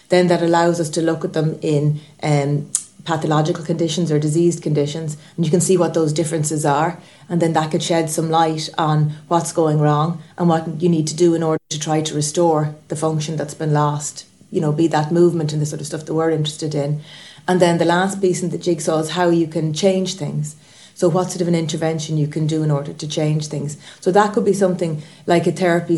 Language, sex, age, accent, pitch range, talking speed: English, female, 30-49, Irish, 155-170 Hz, 235 wpm